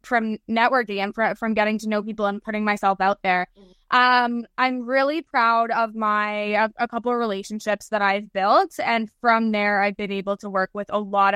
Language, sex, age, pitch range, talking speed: English, female, 20-39, 205-235 Hz, 195 wpm